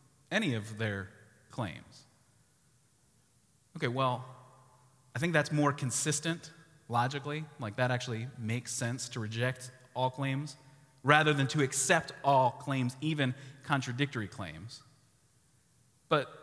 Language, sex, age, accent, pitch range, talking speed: English, male, 30-49, American, 130-155 Hz, 115 wpm